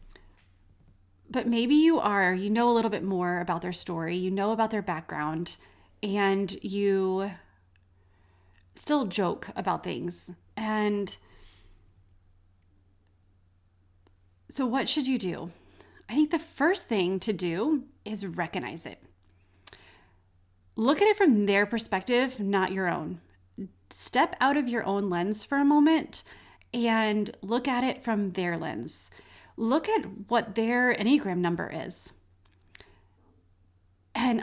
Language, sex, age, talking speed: English, female, 30-49, 125 wpm